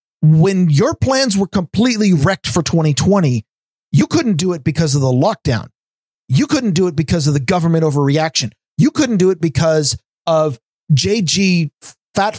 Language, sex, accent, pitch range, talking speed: English, male, American, 160-205 Hz, 160 wpm